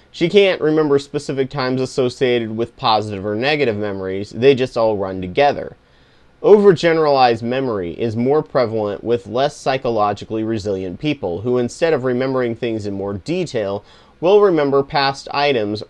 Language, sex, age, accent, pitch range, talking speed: English, male, 30-49, American, 110-145 Hz, 145 wpm